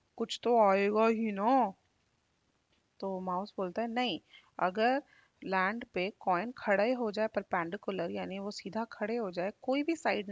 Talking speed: 165 wpm